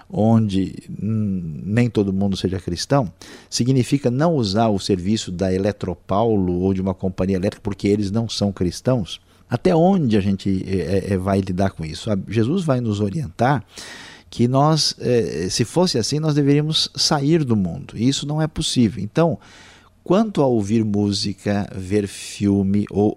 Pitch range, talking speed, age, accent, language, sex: 95-125 Hz, 150 wpm, 50-69, Brazilian, Portuguese, male